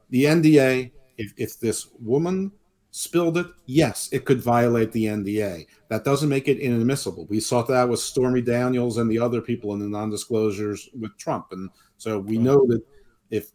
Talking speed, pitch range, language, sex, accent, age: 175 wpm, 100-125 Hz, English, male, American, 50-69